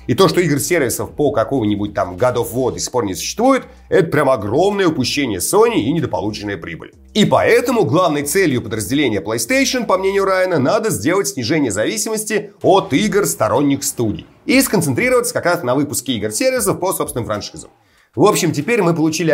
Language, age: Russian, 30-49